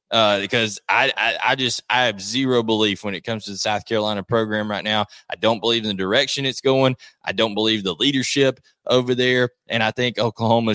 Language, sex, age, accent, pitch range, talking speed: English, male, 20-39, American, 105-130 Hz, 220 wpm